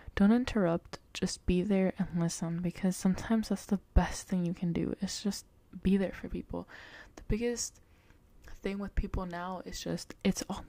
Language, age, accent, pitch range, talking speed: English, 20-39, American, 170-205 Hz, 180 wpm